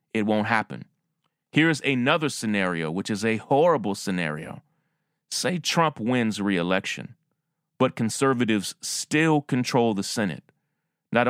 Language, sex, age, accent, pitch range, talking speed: English, male, 30-49, American, 105-145 Hz, 115 wpm